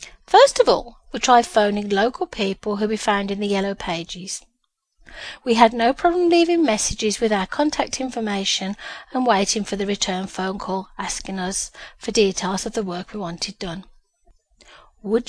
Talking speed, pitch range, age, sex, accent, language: 170 wpm, 195-265 Hz, 40-59, female, British, English